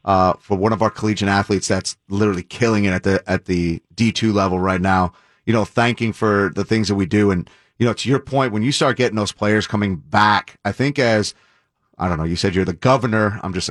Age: 30-49